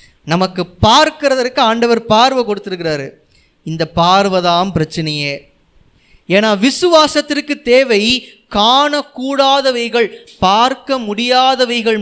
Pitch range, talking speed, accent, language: 190-255 Hz, 75 wpm, native, Tamil